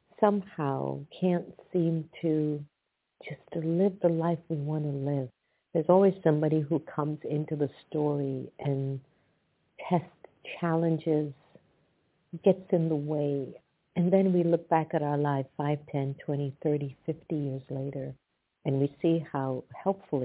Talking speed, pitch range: 140 wpm, 135-165 Hz